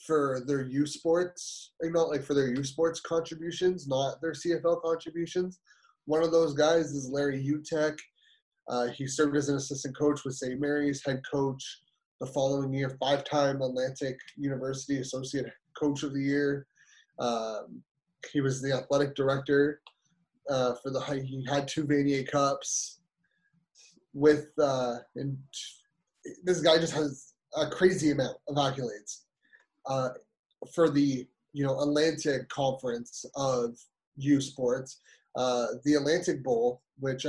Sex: male